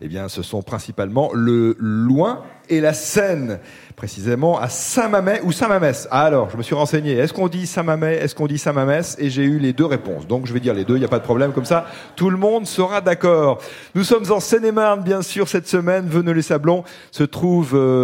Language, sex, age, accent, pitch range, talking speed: French, male, 40-59, French, 115-165 Hz, 230 wpm